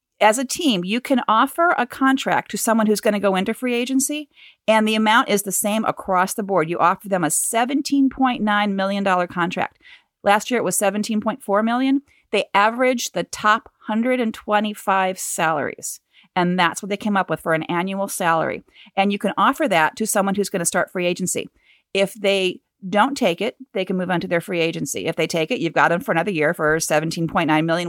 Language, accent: English, American